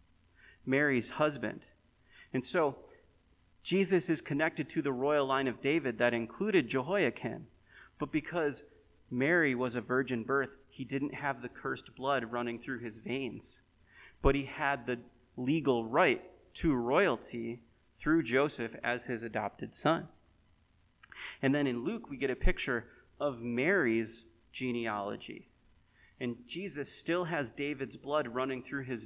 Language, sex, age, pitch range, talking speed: English, male, 30-49, 115-135 Hz, 140 wpm